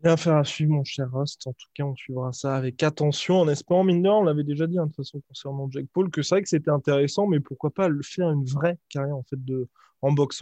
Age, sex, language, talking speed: 20-39, male, French, 290 wpm